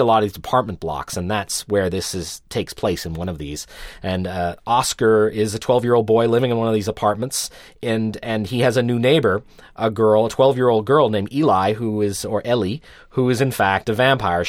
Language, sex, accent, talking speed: English, male, American, 240 wpm